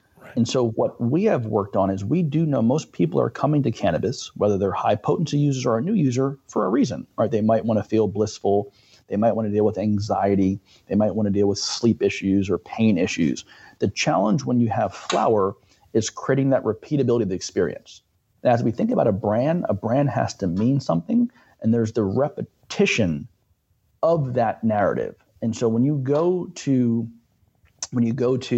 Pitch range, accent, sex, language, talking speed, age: 105-130 Hz, American, male, English, 200 wpm, 40-59